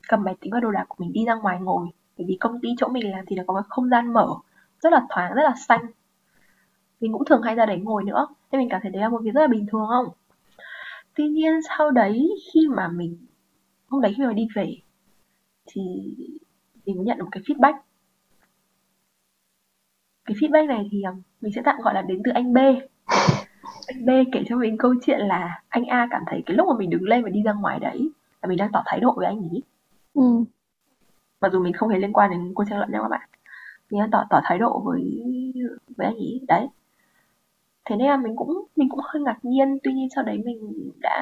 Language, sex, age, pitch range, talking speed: Vietnamese, female, 20-39, 205-270 Hz, 230 wpm